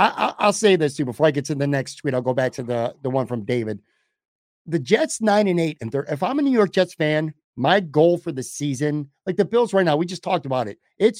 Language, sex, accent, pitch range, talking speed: English, male, American, 135-185 Hz, 275 wpm